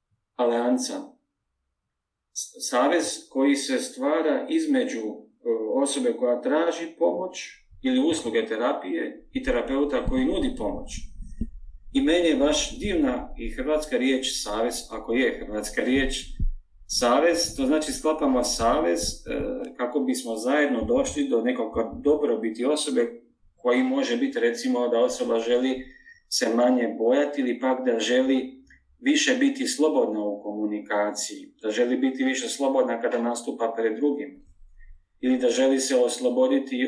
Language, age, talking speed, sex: Croatian, 40-59, 125 wpm, male